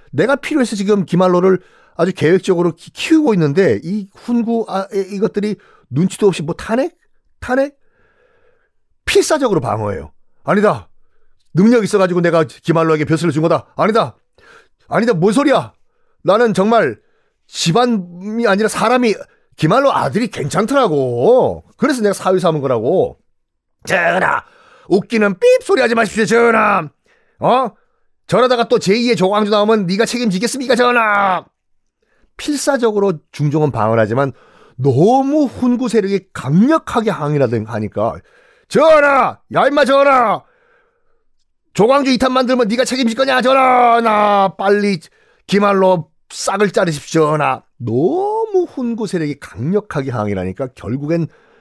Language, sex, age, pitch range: Korean, male, 40-59, 170-255 Hz